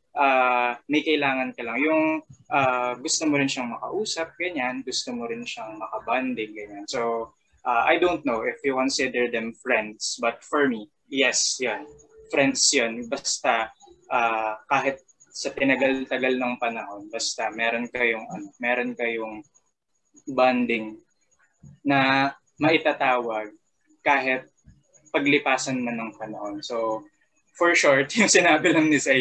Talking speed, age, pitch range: 130 wpm, 20-39, 115-150 Hz